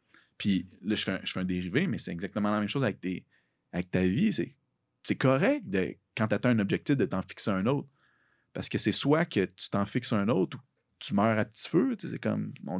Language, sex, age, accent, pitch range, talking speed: French, male, 30-49, Canadian, 100-135 Hz, 250 wpm